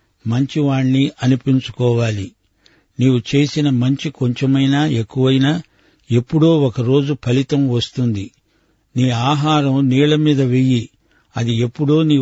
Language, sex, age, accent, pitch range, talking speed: Telugu, male, 60-79, native, 120-145 Hz, 95 wpm